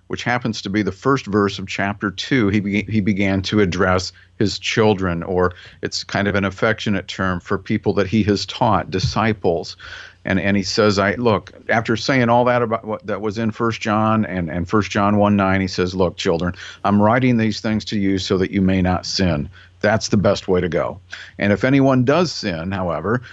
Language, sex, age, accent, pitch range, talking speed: English, male, 50-69, American, 100-120 Hz, 215 wpm